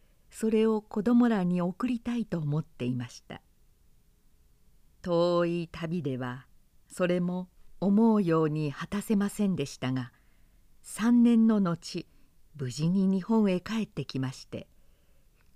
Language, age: Japanese, 50-69